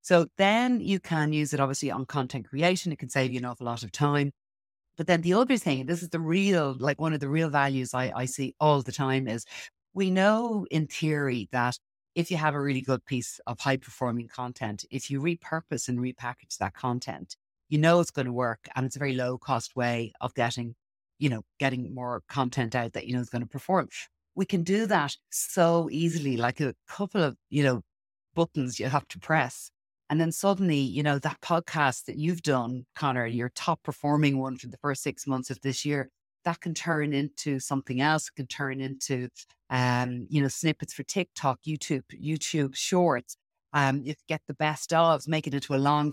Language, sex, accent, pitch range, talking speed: English, female, Irish, 130-160 Hz, 210 wpm